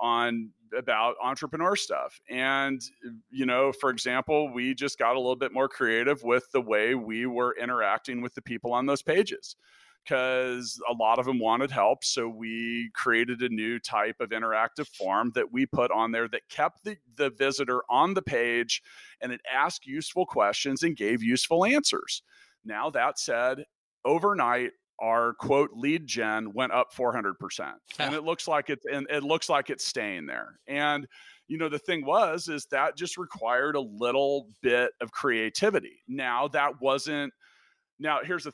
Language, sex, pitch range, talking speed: English, male, 120-160 Hz, 175 wpm